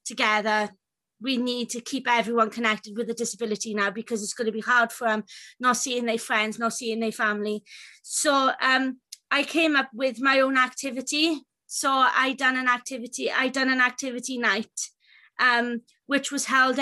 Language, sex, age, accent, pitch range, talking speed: English, female, 20-39, British, 240-275 Hz, 180 wpm